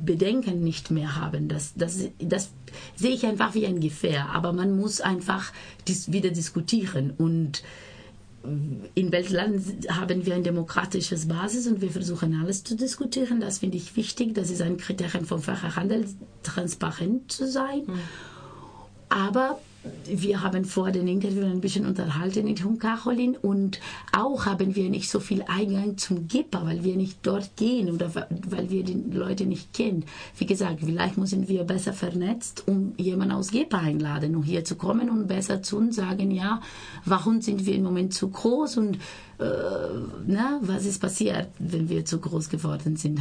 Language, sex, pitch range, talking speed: German, female, 175-210 Hz, 170 wpm